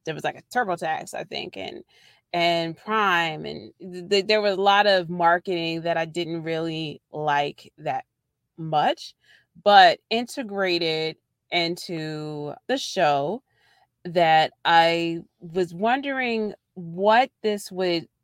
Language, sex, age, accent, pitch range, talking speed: English, female, 30-49, American, 160-190 Hz, 125 wpm